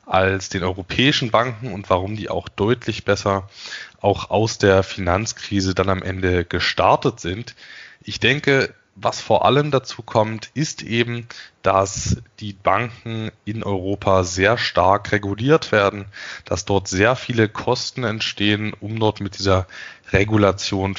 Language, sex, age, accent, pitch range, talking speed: German, male, 20-39, German, 95-120 Hz, 135 wpm